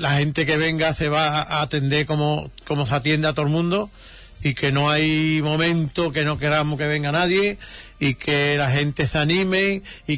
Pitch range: 135-160 Hz